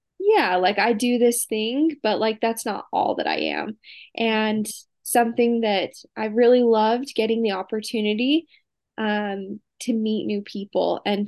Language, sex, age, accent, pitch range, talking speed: English, female, 10-29, American, 205-240 Hz, 155 wpm